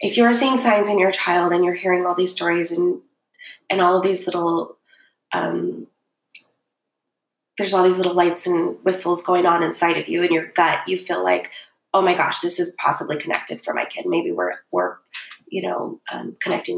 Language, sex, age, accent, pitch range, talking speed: English, female, 20-39, American, 170-200 Hz, 195 wpm